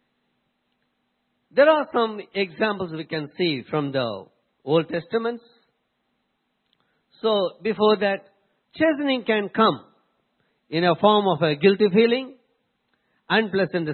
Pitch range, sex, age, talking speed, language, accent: 165-230 Hz, male, 50-69, 110 wpm, English, Indian